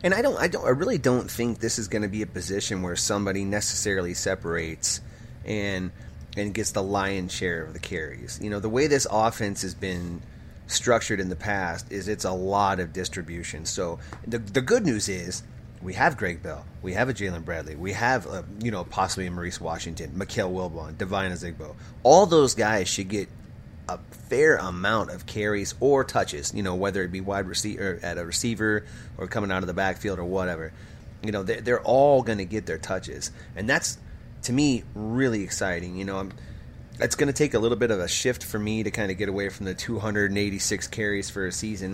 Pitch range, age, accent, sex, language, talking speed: 95-115 Hz, 30-49, American, male, English, 205 wpm